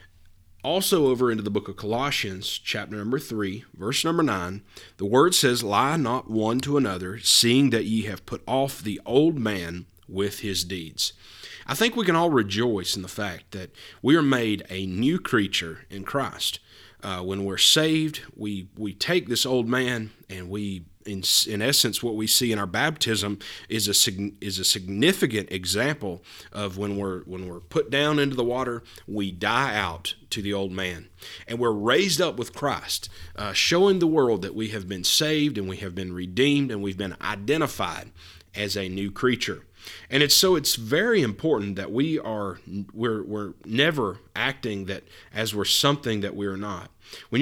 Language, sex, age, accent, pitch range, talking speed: English, male, 30-49, American, 95-130 Hz, 185 wpm